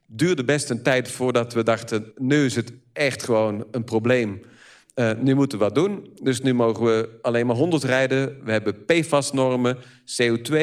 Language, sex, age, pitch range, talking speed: Dutch, male, 50-69, 115-145 Hz, 180 wpm